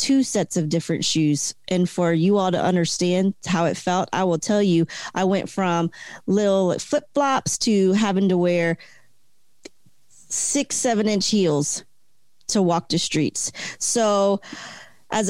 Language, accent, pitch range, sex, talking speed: English, American, 175-220 Hz, female, 145 wpm